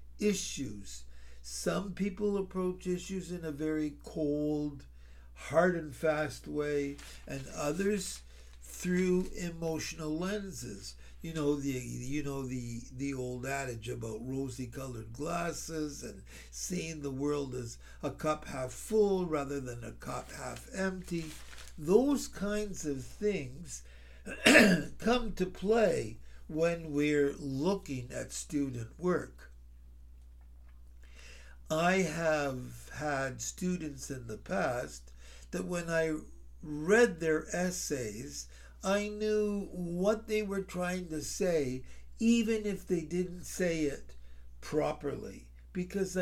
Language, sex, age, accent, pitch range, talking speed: English, male, 60-79, American, 110-180 Hz, 115 wpm